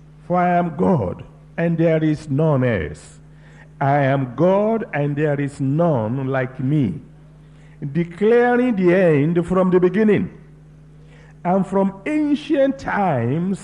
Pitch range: 135-185 Hz